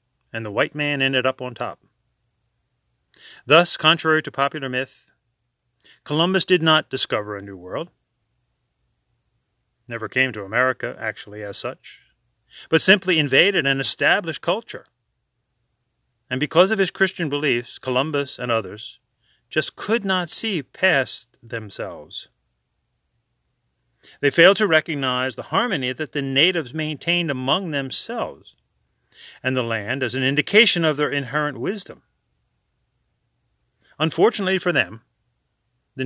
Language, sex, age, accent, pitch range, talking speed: English, male, 40-59, American, 120-160 Hz, 125 wpm